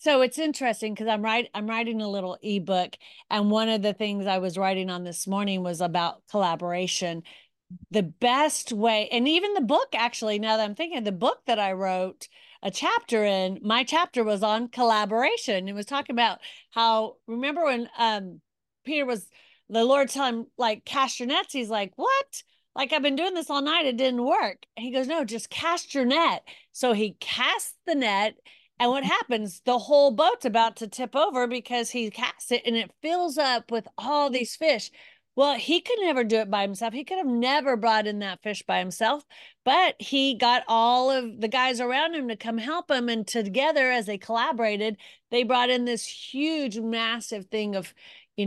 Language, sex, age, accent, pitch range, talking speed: English, female, 40-59, American, 210-270 Hz, 200 wpm